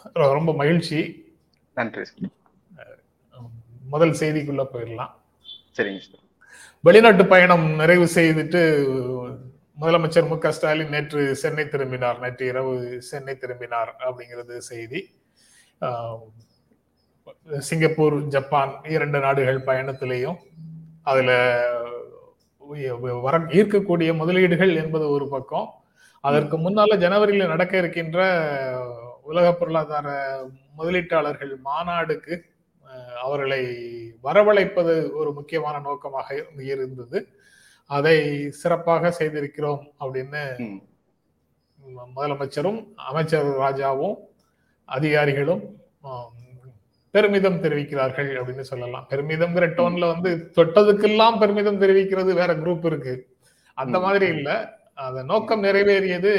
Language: Tamil